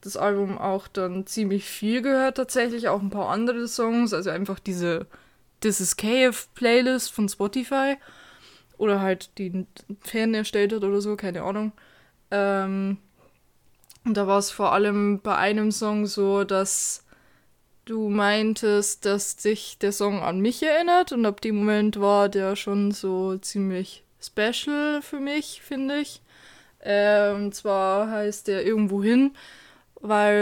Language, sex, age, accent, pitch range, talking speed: German, female, 20-39, German, 200-225 Hz, 145 wpm